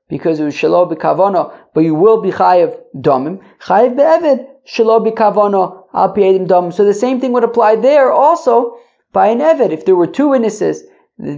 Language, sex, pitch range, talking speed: English, male, 165-255 Hz, 195 wpm